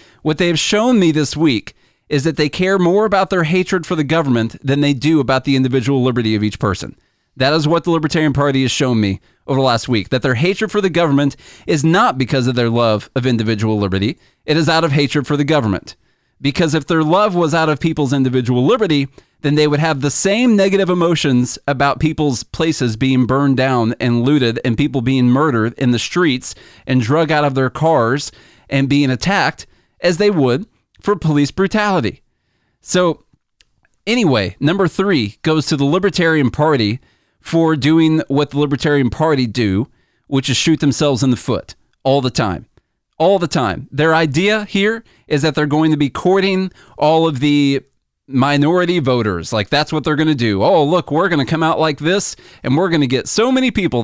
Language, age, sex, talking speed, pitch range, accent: English, 30-49, male, 200 wpm, 130-165 Hz, American